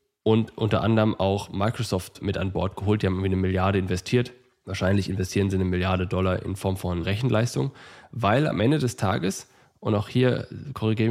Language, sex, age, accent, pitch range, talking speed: German, male, 10-29, German, 100-125 Hz, 185 wpm